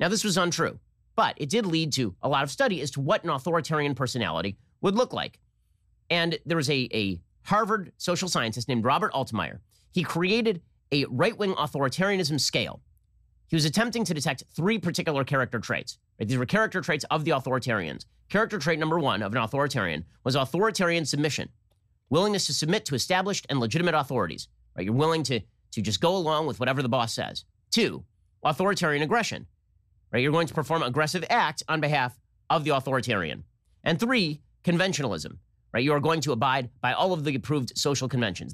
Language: English